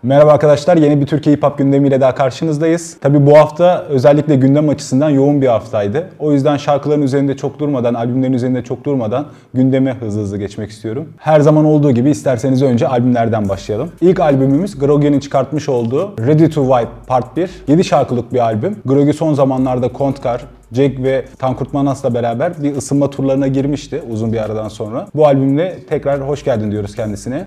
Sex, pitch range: male, 125-150 Hz